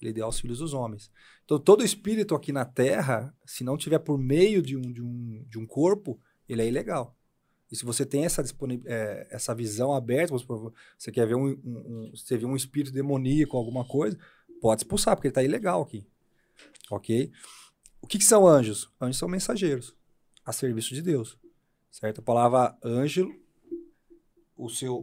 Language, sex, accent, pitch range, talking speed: Portuguese, male, Brazilian, 120-165 Hz, 185 wpm